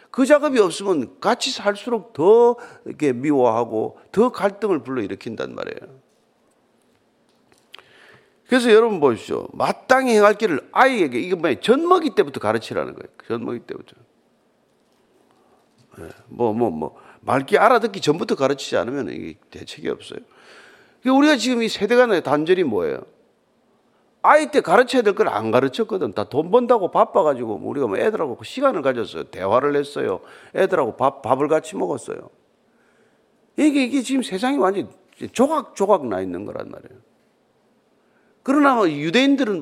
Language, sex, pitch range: Korean, male, 180-275 Hz